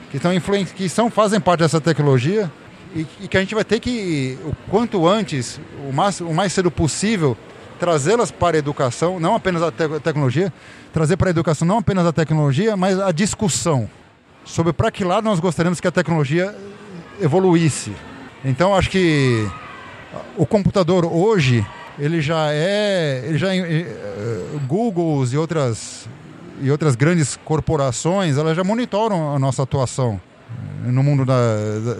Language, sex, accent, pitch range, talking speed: Portuguese, male, Brazilian, 140-195 Hz, 150 wpm